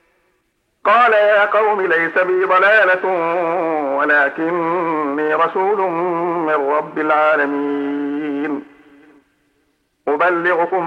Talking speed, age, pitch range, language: 65 wpm, 50-69, 145-185 Hz, Arabic